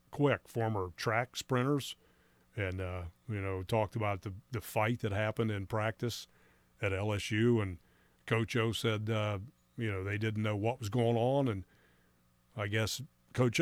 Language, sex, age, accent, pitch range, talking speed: English, male, 50-69, American, 95-125 Hz, 165 wpm